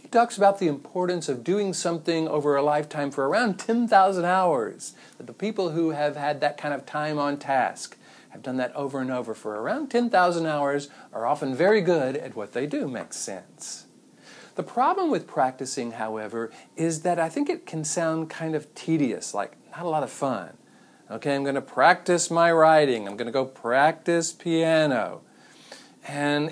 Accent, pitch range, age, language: American, 135-180 Hz, 50-69, English